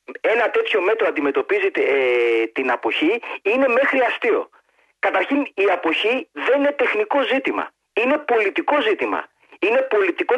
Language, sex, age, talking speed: Greek, male, 40-59, 125 wpm